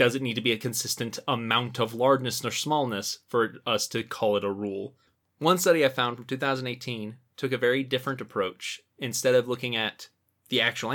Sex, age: male, 20-39